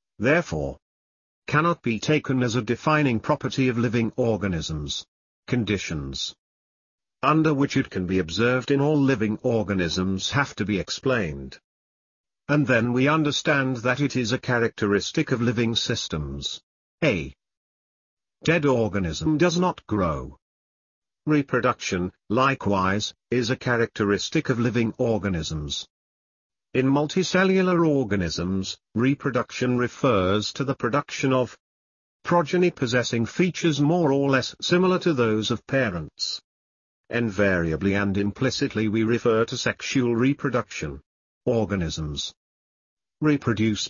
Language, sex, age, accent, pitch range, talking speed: Hindi, male, 50-69, British, 95-135 Hz, 110 wpm